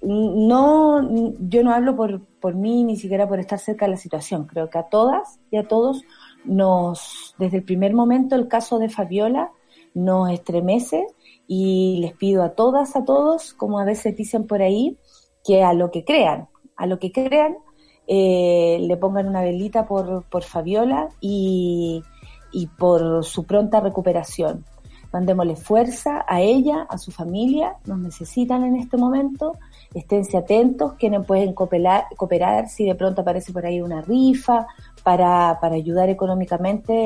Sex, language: female, Spanish